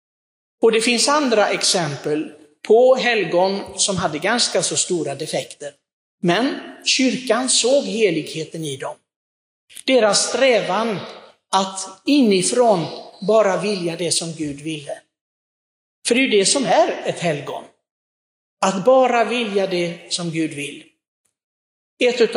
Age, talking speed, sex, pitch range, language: 60-79, 120 wpm, male, 160-225 Hz, Swedish